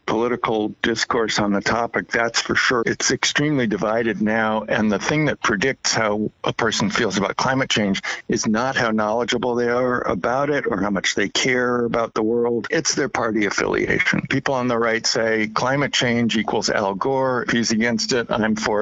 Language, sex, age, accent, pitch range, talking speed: English, male, 60-79, American, 110-130 Hz, 190 wpm